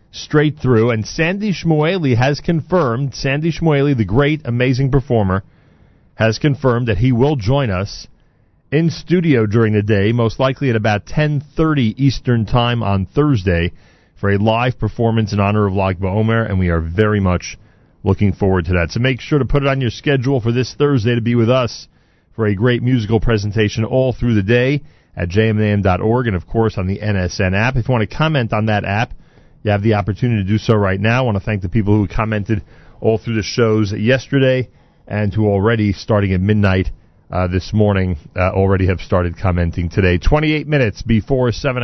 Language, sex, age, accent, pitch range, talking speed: English, male, 40-59, American, 100-130 Hz, 195 wpm